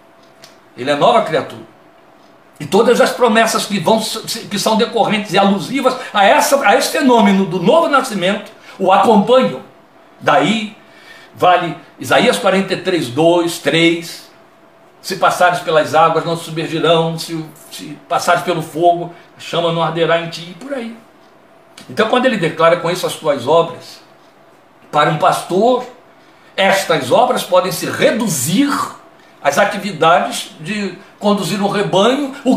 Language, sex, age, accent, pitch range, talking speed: Portuguese, male, 60-79, Brazilian, 170-225 Hz, 140 wpm